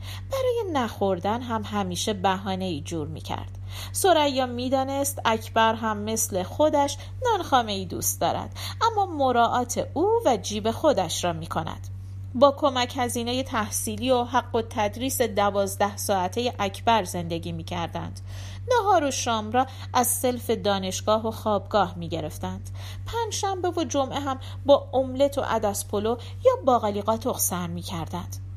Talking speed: 140 wpm